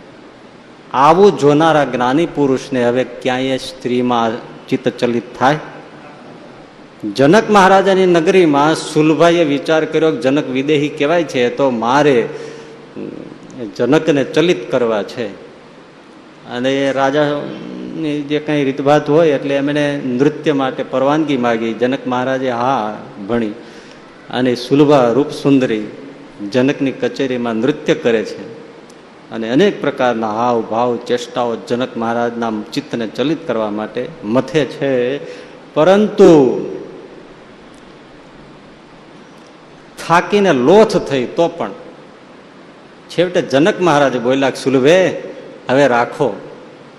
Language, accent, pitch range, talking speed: Gujarati, native, 125-150 Hz, 90 wpm